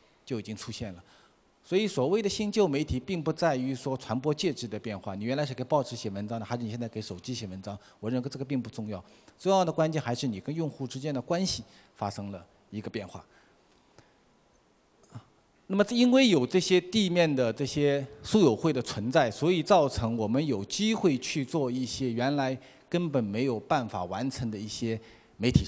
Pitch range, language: 115-170 Hz, Chinese